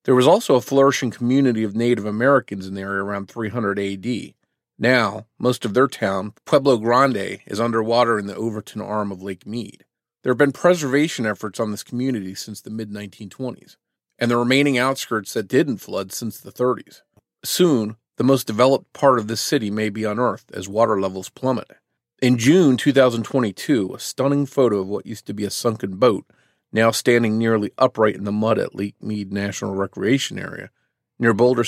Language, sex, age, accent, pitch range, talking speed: English, male, 40-59, American, 100-130 Hz, 180 wpm